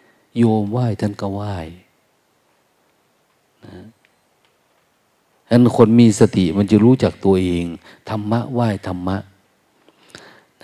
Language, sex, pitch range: Thai, male, 90-110 Hz